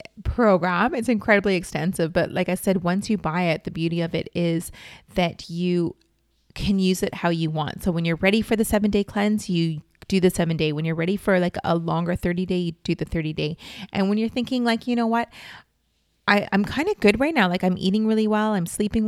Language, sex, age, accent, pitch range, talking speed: English, female, 30-49, American, 170-215 Hz, 235 wpm